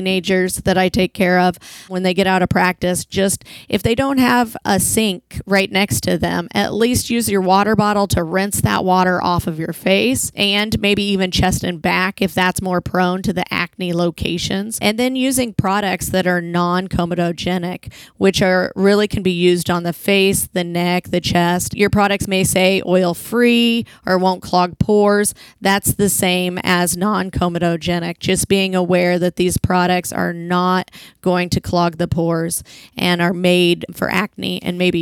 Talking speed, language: 180 wpm, English